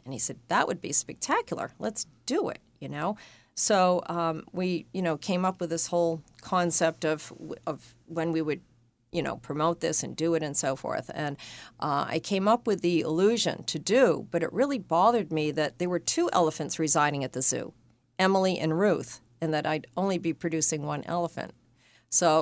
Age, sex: 40-59, female